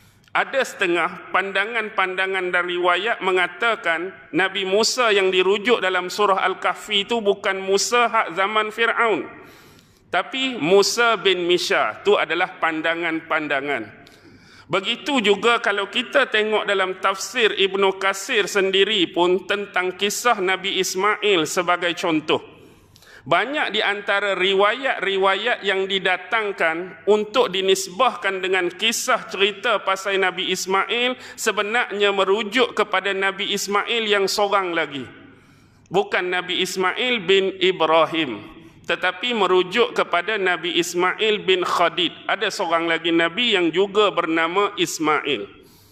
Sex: male